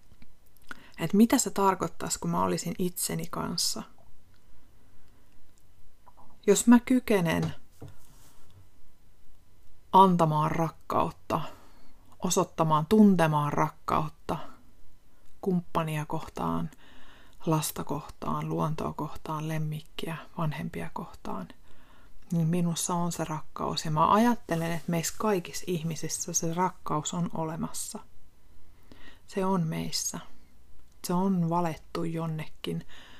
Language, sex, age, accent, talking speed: Finnish, female, 30-49, native, 90 wpm